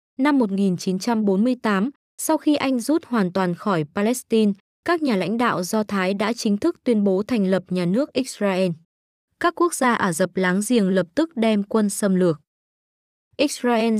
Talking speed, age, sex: 170 wpm, 20-39, female